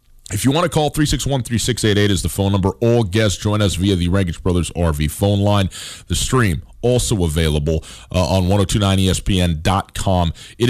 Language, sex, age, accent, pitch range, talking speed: English, male, 40-59, American, 85-100 Hz, 165 wpm